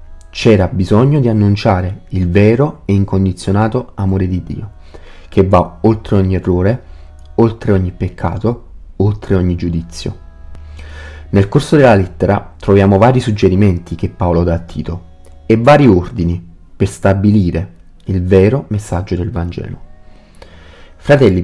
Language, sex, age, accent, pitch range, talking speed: Italian, male, 30-49, native, 90-110 Hz, 125 wpm